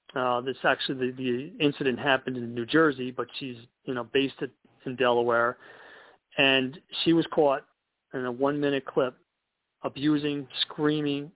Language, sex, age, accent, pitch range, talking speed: English, male, 40-59, American, 125-150 Hz, 145 wpm